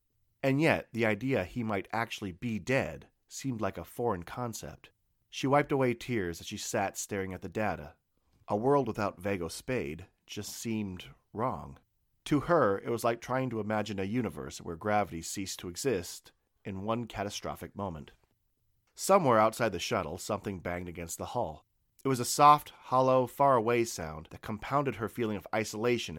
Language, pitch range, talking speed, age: English, 95-120 Hz, 170 wpm, 40-59